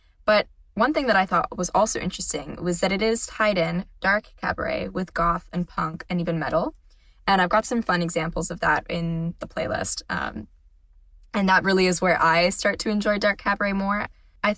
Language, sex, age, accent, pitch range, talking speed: English, female, 10-29, American, 165-205 Hz, 200 wpm